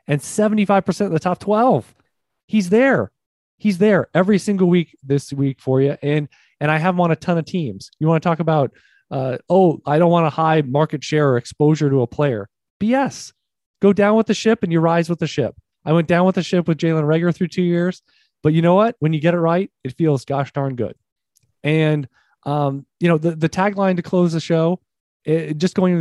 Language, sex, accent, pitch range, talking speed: English, male, American, 150-180 Hz, 230 wpm